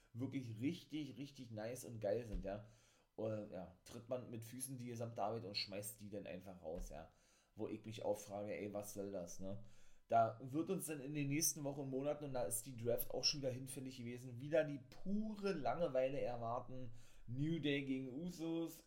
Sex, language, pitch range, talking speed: male, German, 110-140 Hz, 195 wpm